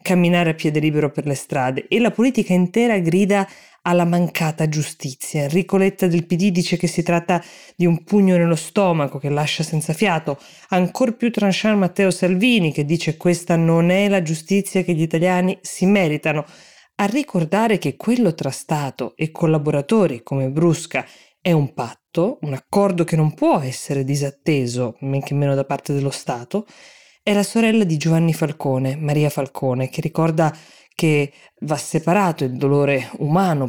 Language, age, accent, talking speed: Italian, 20-39, native, 165 wpm